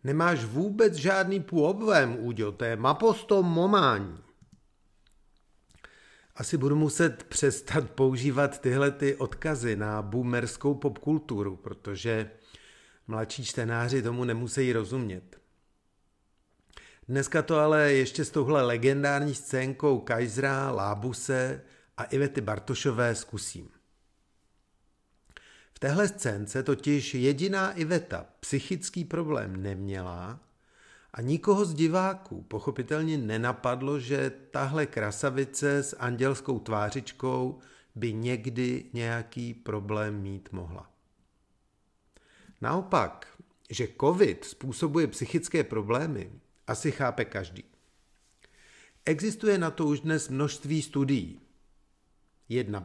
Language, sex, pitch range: Czech, male, 110-150 Hz